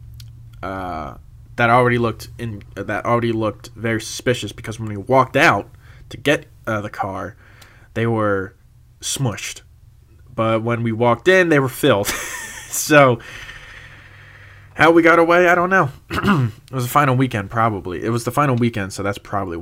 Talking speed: 165 wpm